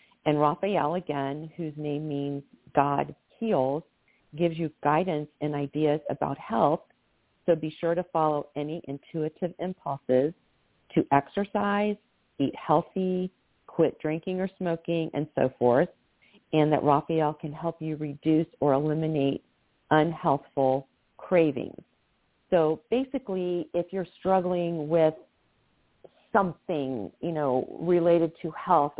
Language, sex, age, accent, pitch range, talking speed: English, female, 50-69, American, 145-175 Hz, 120 wpm